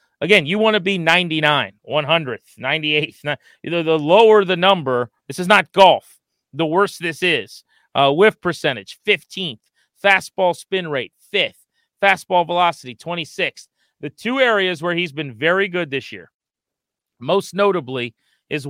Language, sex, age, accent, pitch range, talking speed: English, male, 40-59, American, 145-180 Hz, 150 wpm